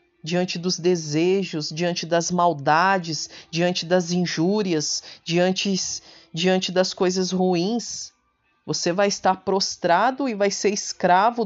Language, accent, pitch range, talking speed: Portuguese, Brazilian, 155-190 Hz, 115 wpm